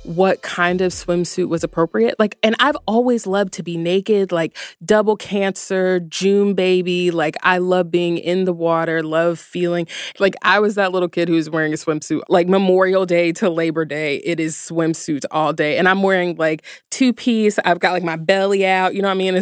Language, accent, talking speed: English, American, 205 wpm